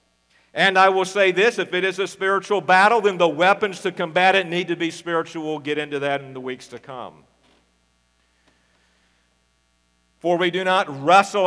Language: English